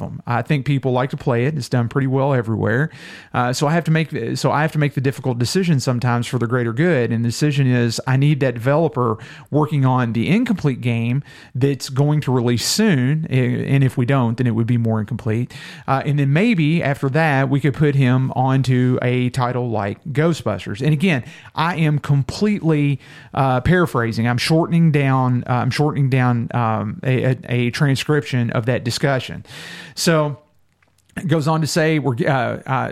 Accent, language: American, English